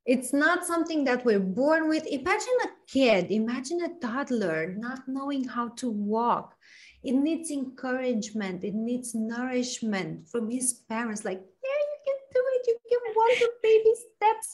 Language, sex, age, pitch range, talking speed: English, female, 30-49, 200-290 Hz, 160 wpm